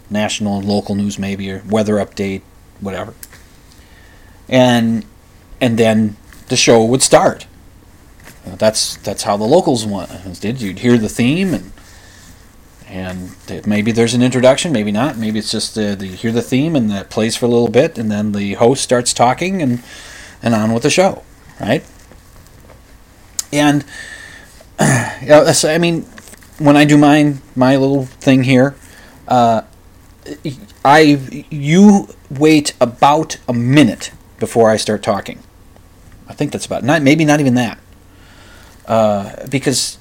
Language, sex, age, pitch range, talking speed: English, male, 30-49, 100-145 Hz, 150 wpm